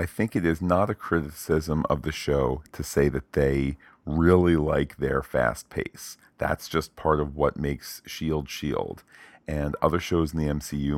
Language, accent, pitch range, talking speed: English, American, 70-80 Hz, 180 wpm